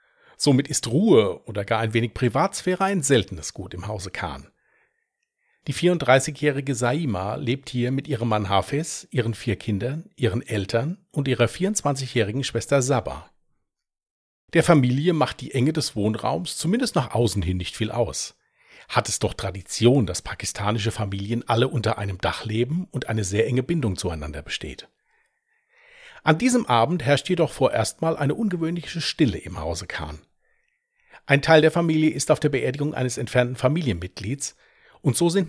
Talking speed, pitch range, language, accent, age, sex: 155 wpm, 110-155 Hz, German, German, 40-59, male